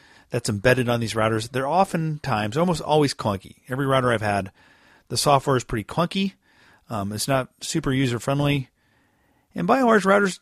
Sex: male